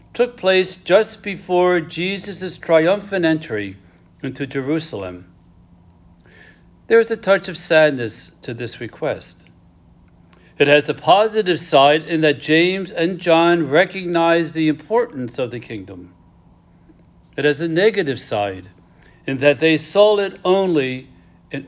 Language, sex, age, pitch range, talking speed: English, male, 60-79, 105-175 Hz, 125 wpm